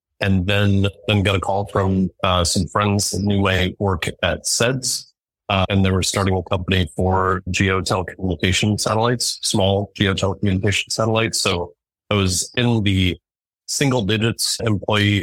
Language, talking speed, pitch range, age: English, 145 wpm, 90-100 Hz, 30-49